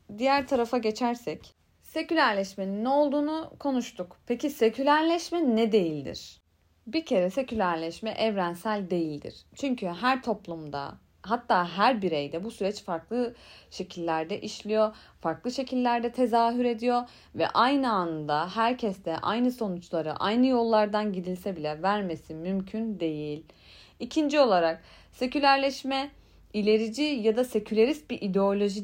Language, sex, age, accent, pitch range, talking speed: Turkish, female, 30-49, native, 185-250 Hz, 110 wpm